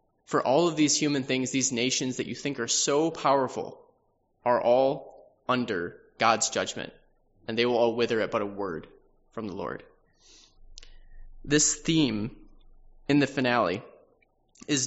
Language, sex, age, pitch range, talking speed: English, male, 20-39, 115-145 Hz, 150 wpm